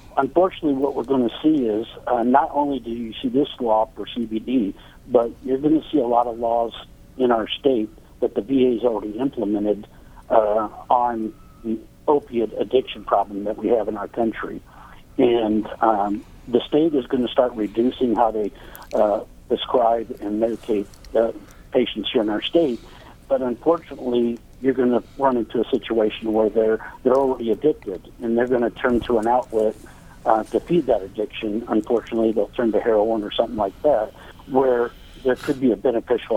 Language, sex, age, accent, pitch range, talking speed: English, male, 60-79, American, 110-135 Hz, 180 wpm